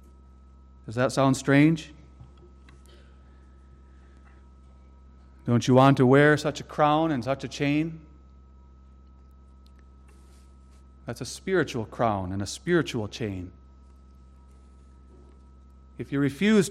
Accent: American